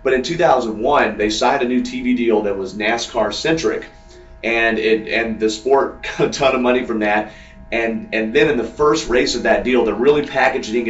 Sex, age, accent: male, 30-49, American